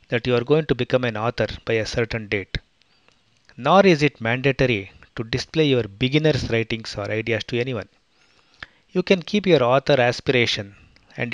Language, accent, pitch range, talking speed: English, Indian, 115-145 Hz, 170 wpm